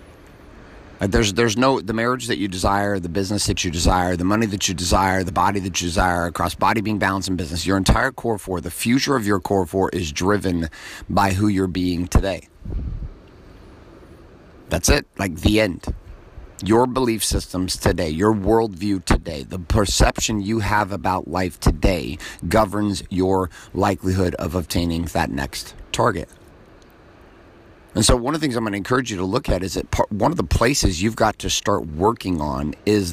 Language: English